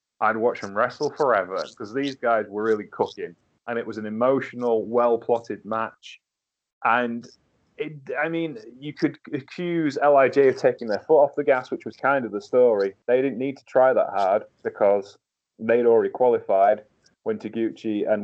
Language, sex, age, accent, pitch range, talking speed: English, male, 30-49, British, 110-160 Hz, 175 wpm